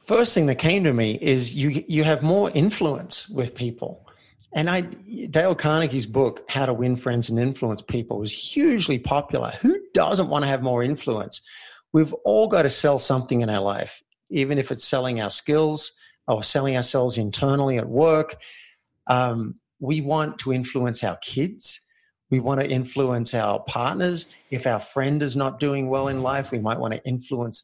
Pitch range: 120-150 Hz